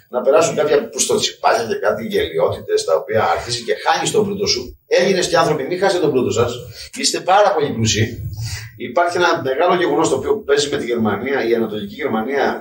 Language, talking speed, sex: Greek, 190 wpm, male